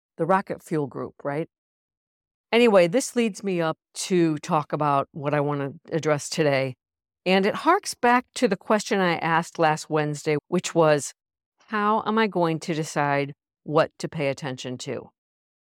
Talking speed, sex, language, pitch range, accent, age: 165 wpm, female, English, 160-205 Hz, American, 50-69